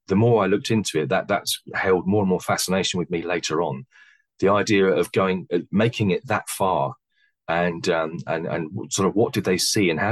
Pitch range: 85-110 Hz